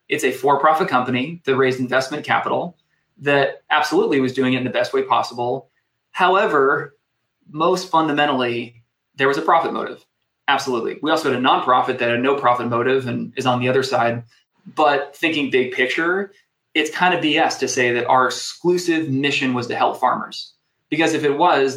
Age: 20-39